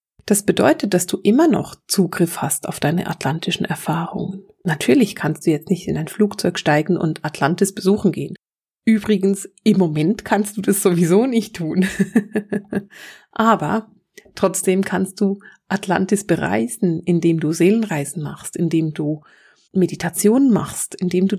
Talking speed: 140 wpm